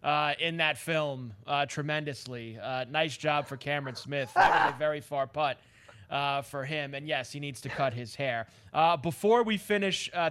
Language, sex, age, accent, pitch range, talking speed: English, male, 30-49, American, 135-200 Hz, 180 wpm